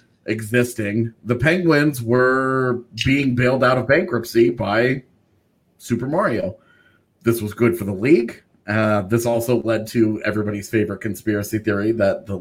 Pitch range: 105-130 Hz